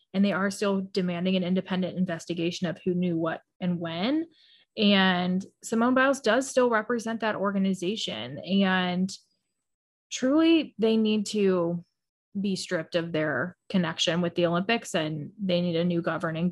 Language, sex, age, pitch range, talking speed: English, female, 20-39, 185-220 Hz, 150 wpm